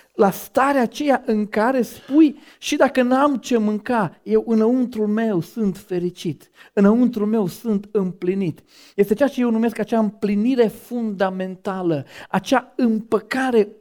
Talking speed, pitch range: 130 wpm, 195-235 Hz